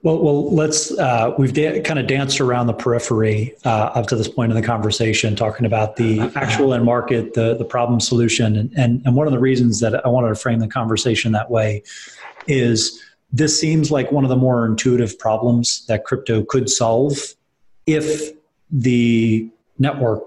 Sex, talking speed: male, 185 wpm